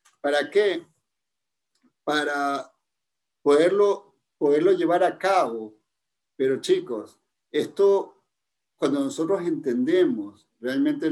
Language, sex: Spanish, male